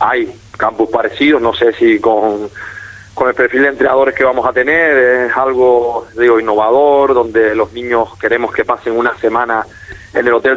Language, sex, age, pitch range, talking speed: Spanish, male, 30-49, 110-130 Hz, 175 wpm